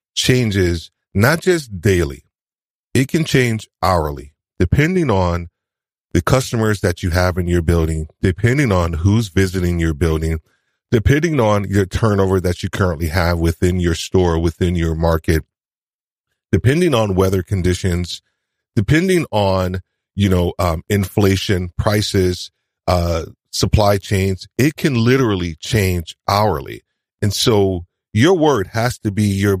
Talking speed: 130 wpm